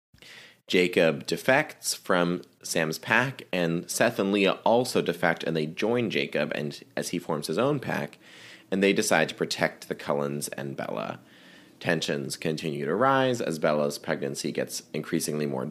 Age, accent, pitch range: 30-49, American, 75-100 Hz